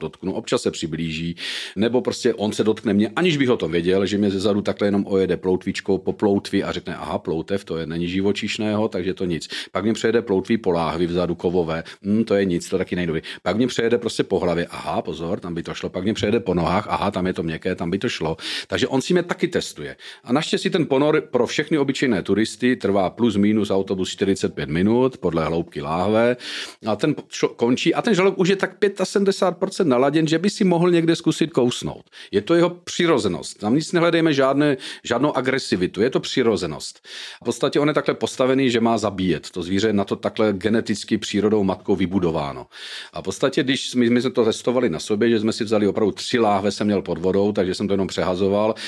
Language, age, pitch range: Czech, 40-59, 95-125 Hz